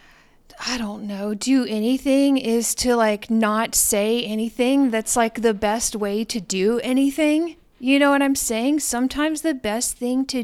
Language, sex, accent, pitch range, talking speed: English, female, American, 225-265 Hz, 165 wpm